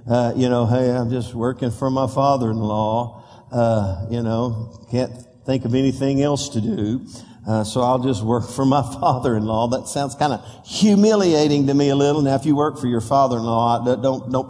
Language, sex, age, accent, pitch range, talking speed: English, male, 50-69, American, 120-155 Hz, 190 wpm